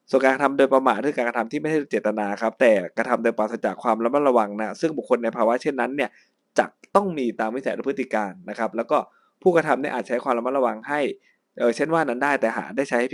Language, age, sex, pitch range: Thai, 20-39, male, 110-135 Hz